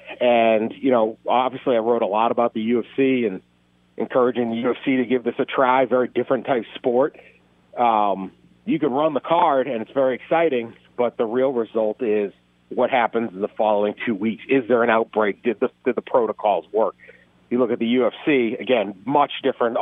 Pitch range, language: 95-125 Hz, English